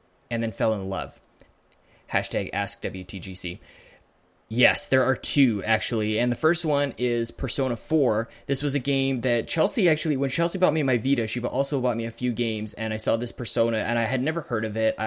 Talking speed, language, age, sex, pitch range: 205 wpm, English, 20-39, male, 110-140 Hz